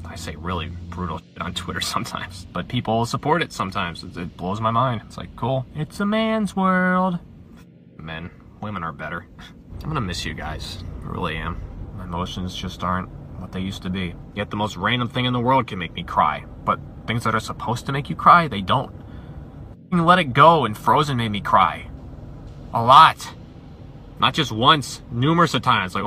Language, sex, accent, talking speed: English, male, American, 195 wpm